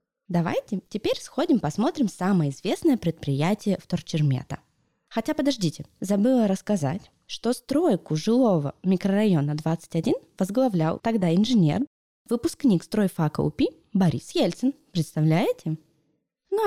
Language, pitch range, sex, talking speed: Russian, 160-235 Hz, female, 100 wpm